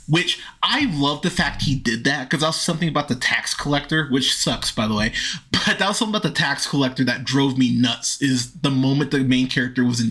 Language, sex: English, male